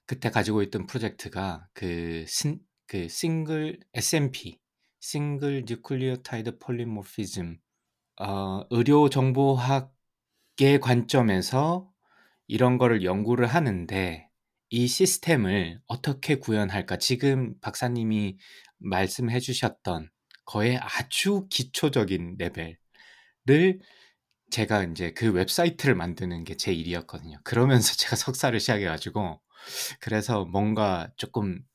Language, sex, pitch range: Korean, male, 90-125 Hz